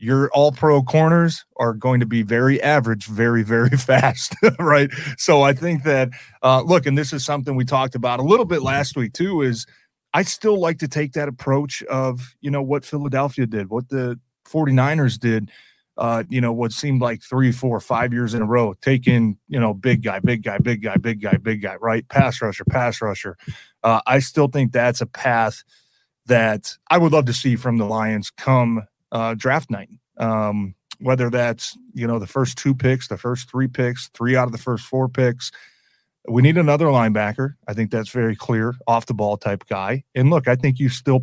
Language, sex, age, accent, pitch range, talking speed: English, male, 30-49, American, 115-135 Hz, 205 wpm